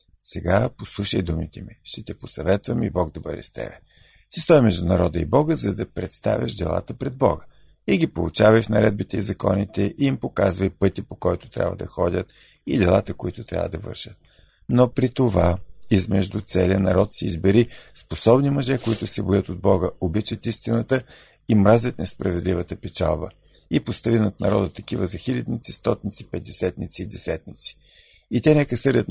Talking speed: 170 wpm